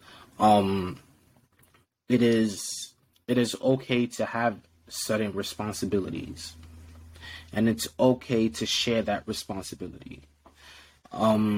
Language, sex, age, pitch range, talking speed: English, male, 20-39, 100-115 Hz, 95 wpm